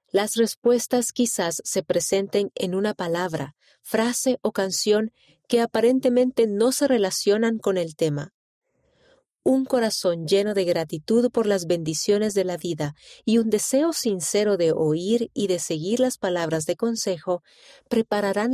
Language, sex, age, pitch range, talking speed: Spanish, female, 40-59, 175-240 Hz, 140 wpm